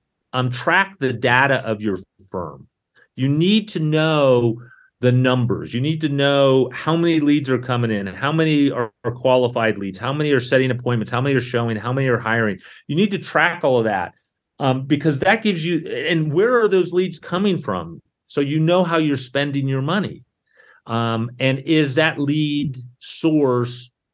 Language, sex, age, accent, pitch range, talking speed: English, male, 40-59, American, 120-170 Hz, 190 wpm